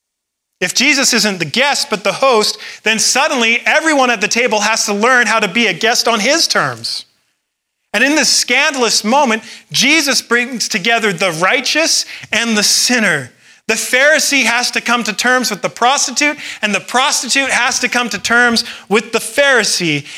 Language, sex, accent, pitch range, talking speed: English, male, American, 165-240 Hz, 175 wpm